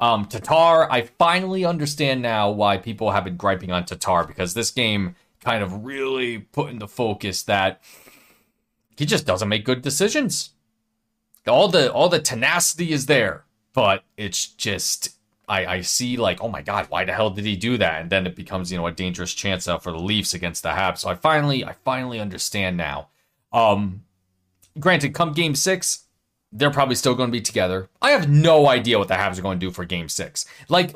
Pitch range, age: 100-160 Hz, 30-49